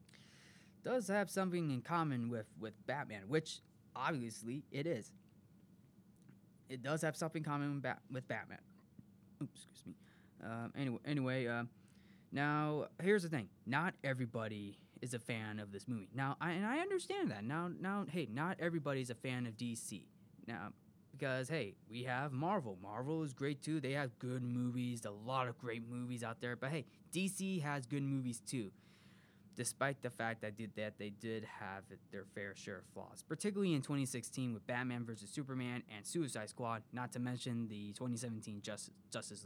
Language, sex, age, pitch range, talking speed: English, male, 20-39, 110-145 Hz, 175 wpm